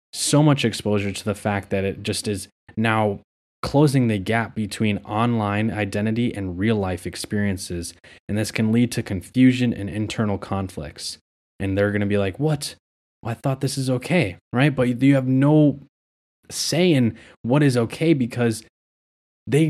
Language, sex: English, male